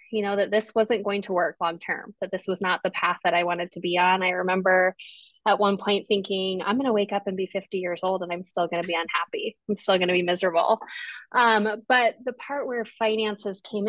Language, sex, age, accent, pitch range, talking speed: English, female, 20-39, American, 180-215 Hz, 250 wpm